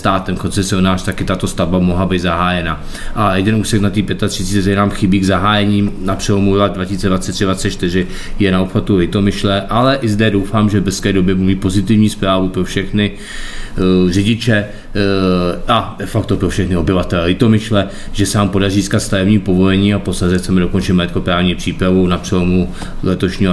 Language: Czech